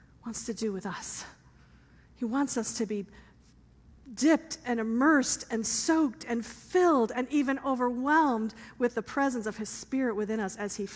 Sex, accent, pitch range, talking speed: female, American, 220-285 Hz, 165 wpm